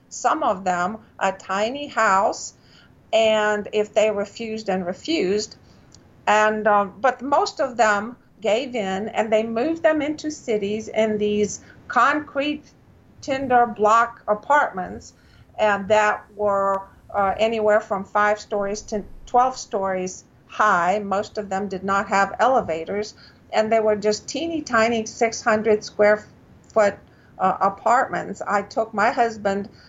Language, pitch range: English, 195-230 Hz